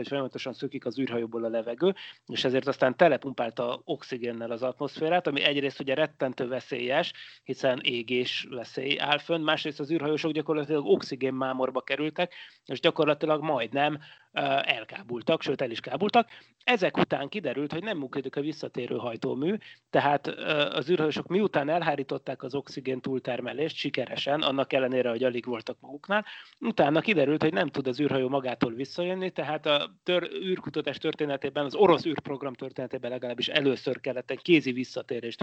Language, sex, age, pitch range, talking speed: Hungarian, male, 30-49, 130-155 Hz, 145 wpm